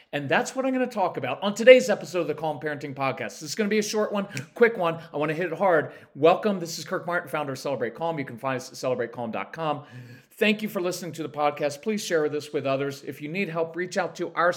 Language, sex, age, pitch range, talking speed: English, male, 40-59, 135-180 Hz, 275 wpm